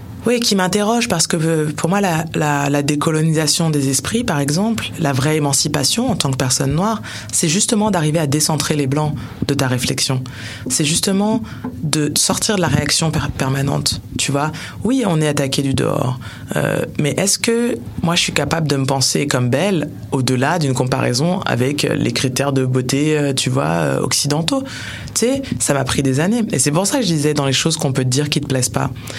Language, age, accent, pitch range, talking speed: French, 20-39, French, 125-165 Hz, 210 wpm